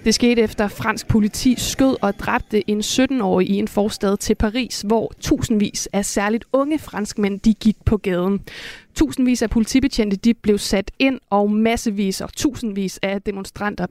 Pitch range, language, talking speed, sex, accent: 200-240 Hz, Danish, 160 wpm, female, native